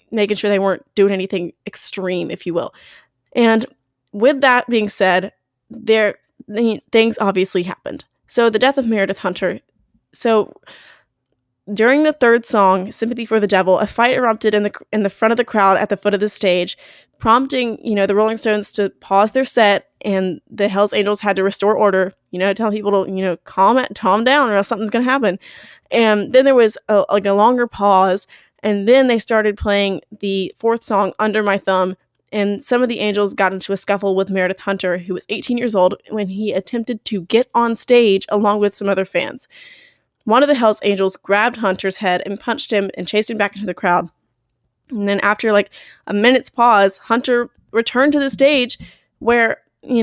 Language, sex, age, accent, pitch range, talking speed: English, female, 20-39, American, 195-235 Hz, 200 wpm